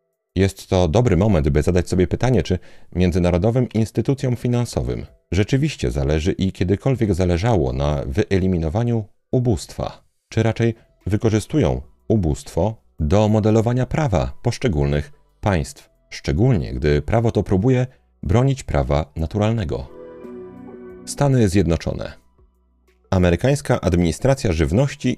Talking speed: 100 wpm